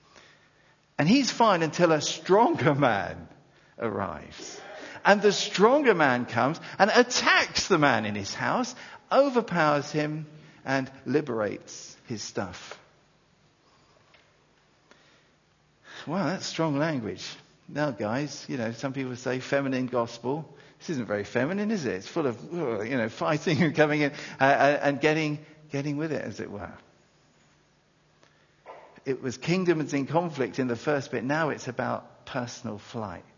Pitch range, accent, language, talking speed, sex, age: 130-190 Hz, British, English, 135 wpm, male, 50-69